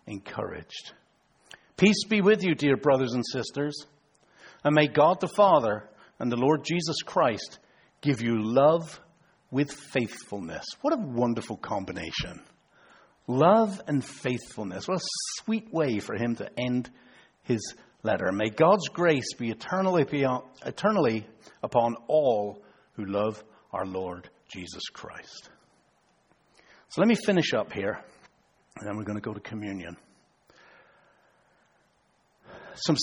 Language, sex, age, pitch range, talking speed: English, male, 60-79, 115-165 Hz, 125 wpm